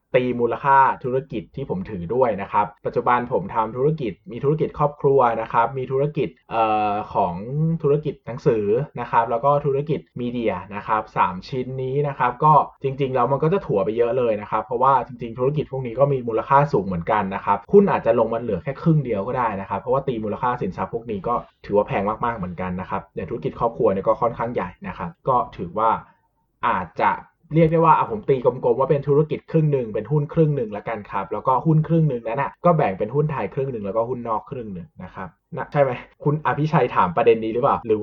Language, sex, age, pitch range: Thai, male, 20-39, 120-160 Hz